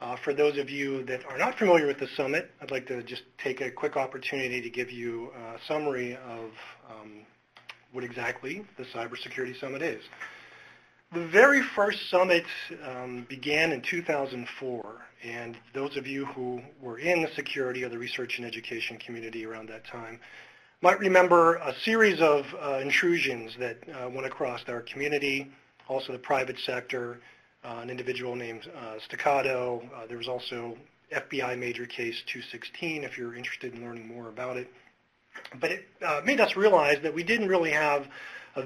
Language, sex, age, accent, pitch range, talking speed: English, male, 40-59, American, 125-150 Hz, 170 wpm